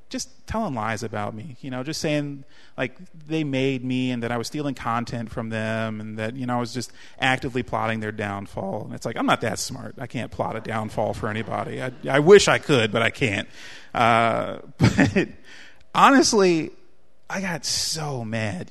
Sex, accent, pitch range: male, American, 115-150 Hz